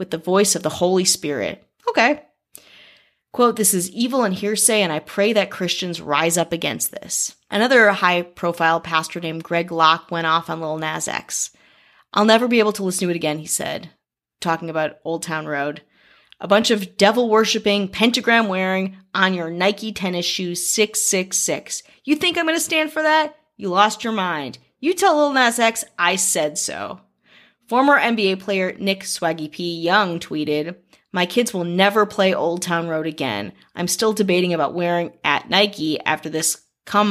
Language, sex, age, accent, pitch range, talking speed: English, female, 30-49, American, 165-225 Hz, 175 wpm